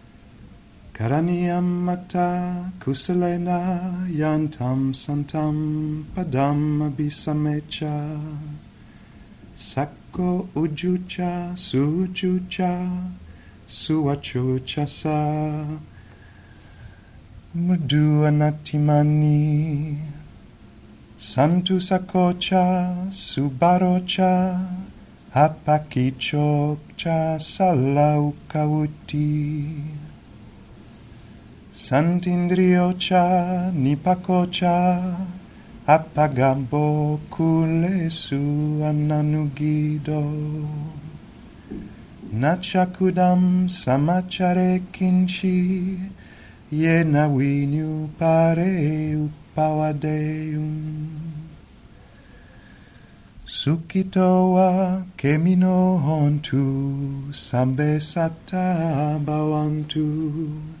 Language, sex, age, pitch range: English, male, 40-59, 150-180 Hz